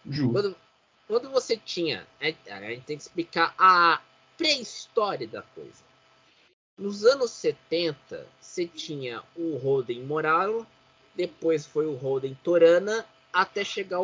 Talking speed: 120 wpm